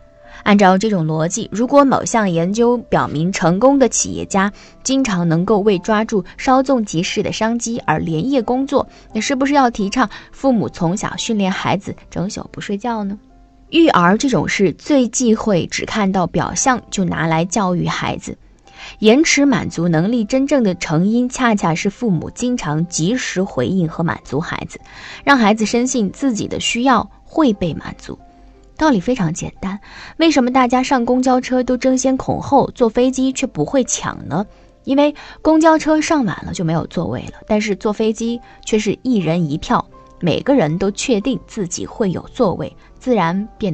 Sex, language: female, Chinese